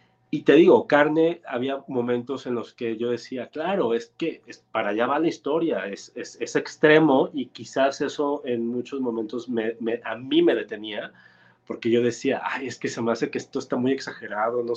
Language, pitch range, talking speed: Spanish, 115-135 Hz, 205 wpm